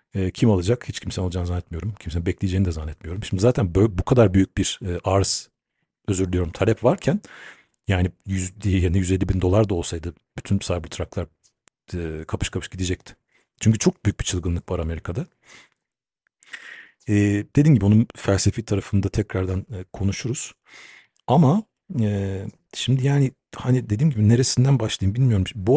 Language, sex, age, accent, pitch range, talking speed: Turkish, male, 50-69, native, 90-115 Hz, 150 wpm